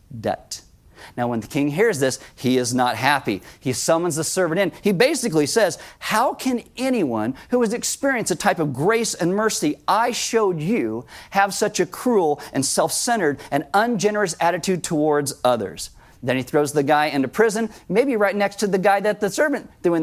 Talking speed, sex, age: 190 wpm, male, 40-59